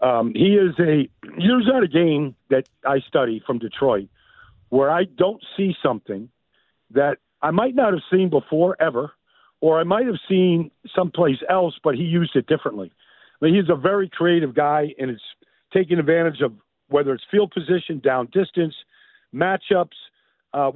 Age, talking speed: 50-69, 170 wpm